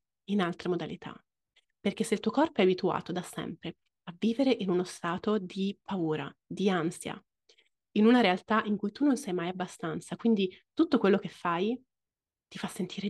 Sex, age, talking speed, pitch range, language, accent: female, 30-49, 180 wpm, 180-220 Hz, Italian, native